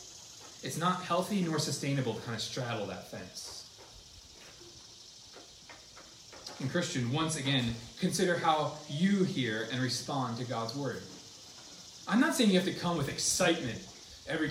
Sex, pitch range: male, 115-175 Hz